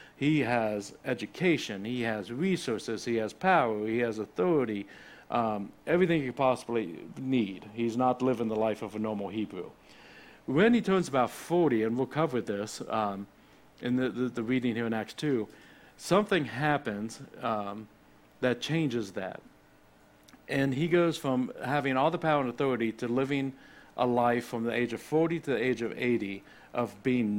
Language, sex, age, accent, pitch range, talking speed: English, male, 60-79, American, 110-130 Hz, 170 wpm